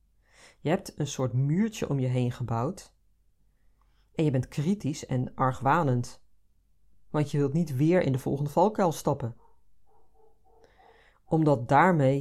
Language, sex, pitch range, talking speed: Dutch, female, 105-155 Hz, 135 wpm